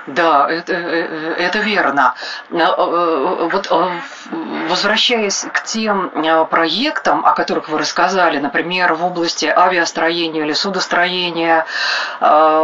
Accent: native